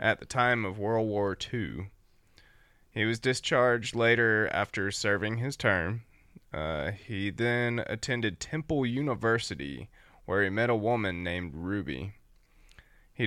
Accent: American